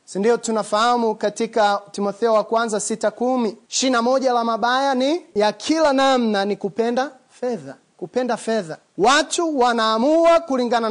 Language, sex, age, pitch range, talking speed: Swahili, male, 30-49, 210-295 Hz, 130 wpm